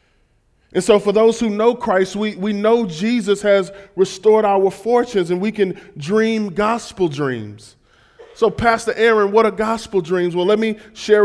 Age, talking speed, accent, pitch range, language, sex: 20-39, 170 wpm, American, 175-210 Hz, English, male